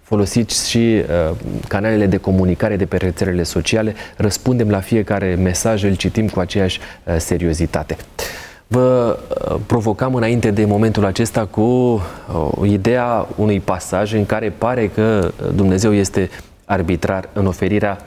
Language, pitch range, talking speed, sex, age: Romanian, 95-125 Hz, 135 wpm, male, 30-49